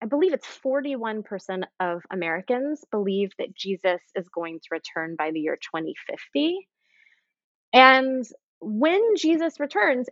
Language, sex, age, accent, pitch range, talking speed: English, female, 20-39, American, 180-255 Hz, 125 wpm